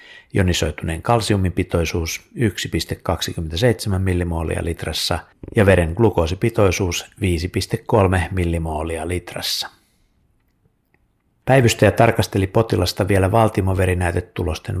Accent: native